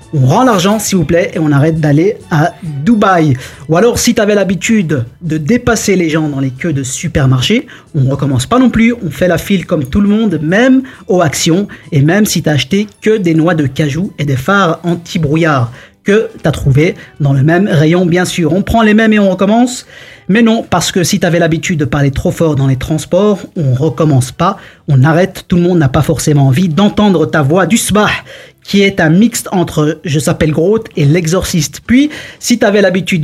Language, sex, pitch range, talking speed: French, male, 150-200 Hz, 220 wpm